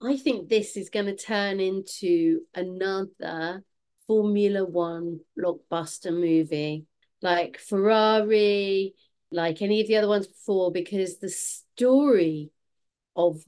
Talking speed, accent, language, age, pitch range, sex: 115 wpm, British, English, 40-59, 175-235 Hz, female